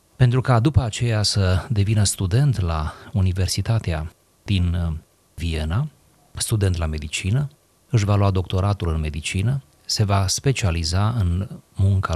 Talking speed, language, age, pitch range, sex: 125 wpm, Romanian, 30-49, 90-115 Hz, male